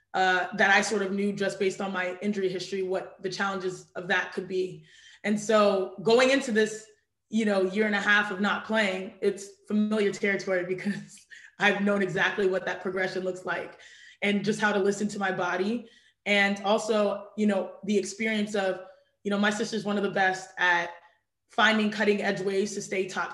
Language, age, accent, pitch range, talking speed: English, 20-39, American, 190-210 Hz, 195 wpm